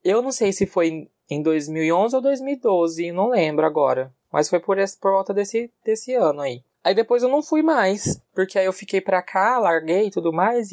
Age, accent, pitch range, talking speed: 20-39, Brazilian, 135-195 Hz, 205 wpm